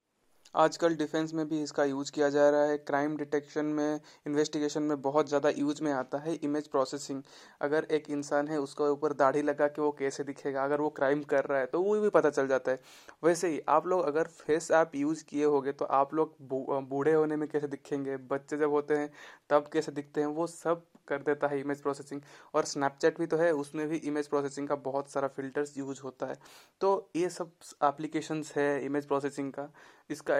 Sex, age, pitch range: male, 20-39, 140-150 Hz